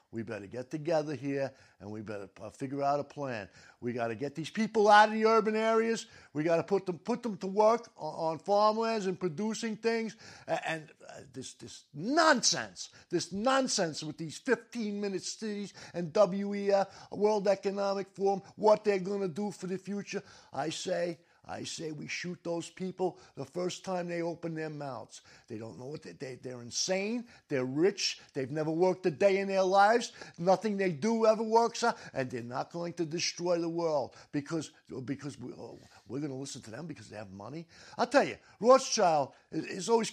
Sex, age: male, 50-69